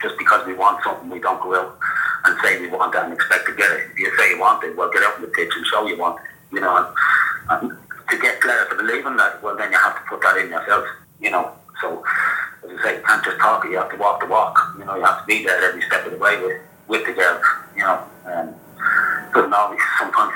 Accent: British